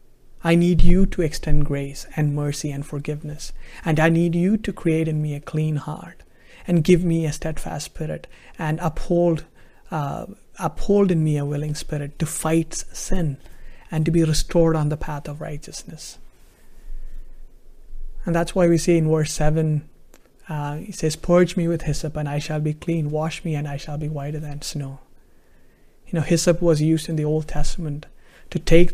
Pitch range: 150-175 Hz